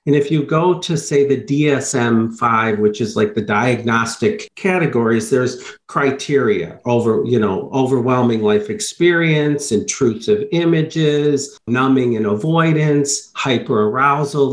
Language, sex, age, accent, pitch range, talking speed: English, male, 50-69, American, 130-165 Hz, 115 wpm